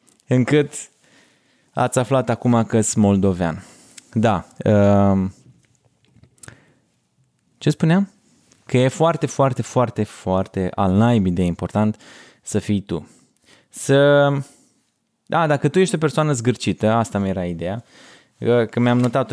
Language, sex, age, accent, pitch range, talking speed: Romanian, male, 20-39, native, 110-145 Hz, 110 wpm